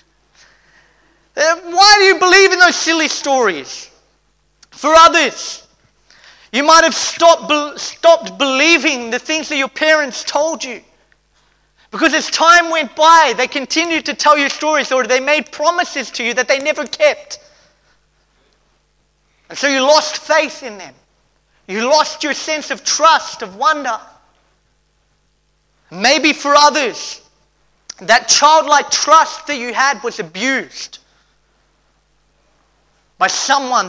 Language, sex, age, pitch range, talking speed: English, male, 30-49, 240-305 Hz, 130 wpm